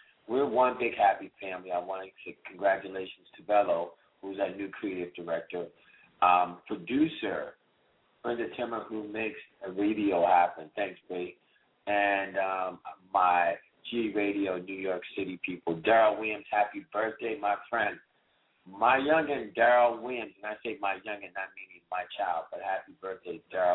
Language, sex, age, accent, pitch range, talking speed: English, male, 50-69, American, 95-120 Hz, 150 wpm